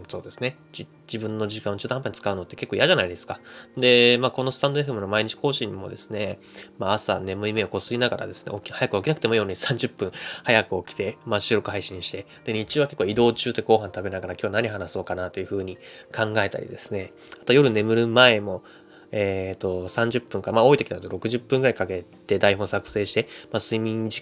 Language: Japanese